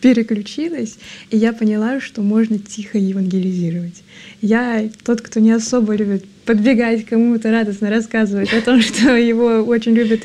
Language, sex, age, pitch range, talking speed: Russian, female, 20-39, 210-245 Hz, 145 wpm